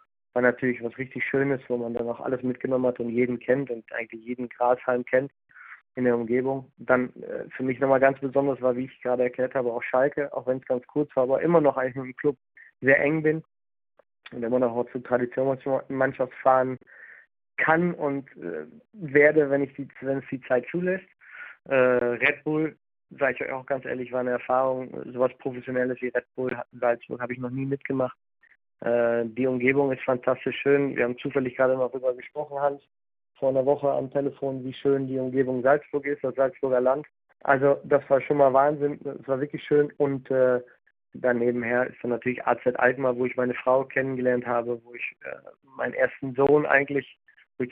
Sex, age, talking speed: male, 20-39, 190 wpm